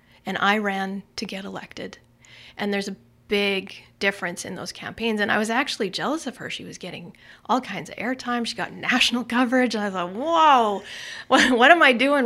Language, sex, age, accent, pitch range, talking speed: English, female, 30-49, American, 185-235 Hz, 195 wpm